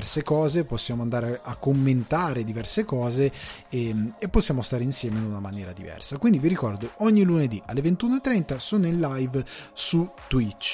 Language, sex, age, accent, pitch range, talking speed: Italian, male, 30-49, native, 115-160 Hz, 155 wpm